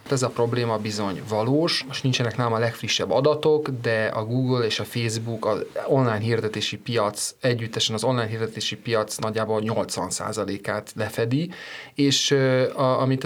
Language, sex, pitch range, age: Hungarian, male, 115-145 Hz, 30-49